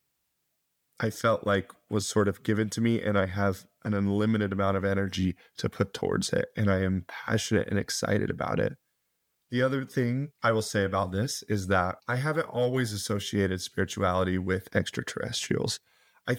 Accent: American